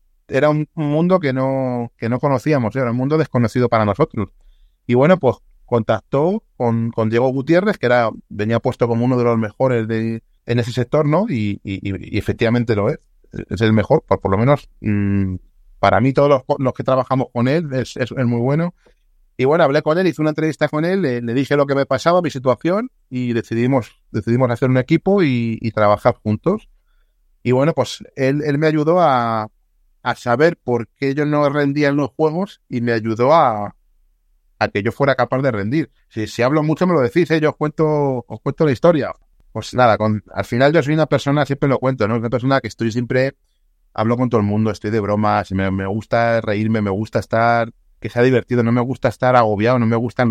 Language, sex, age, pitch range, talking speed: Spanish, male, 30-49, 110-140 Hz, 215 wpm